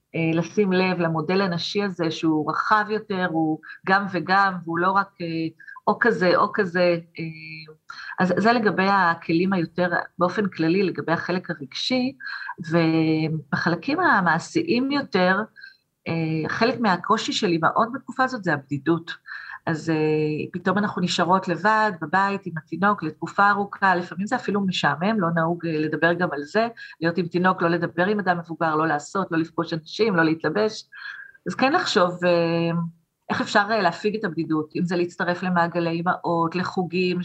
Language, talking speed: Hebrew, 145 wpm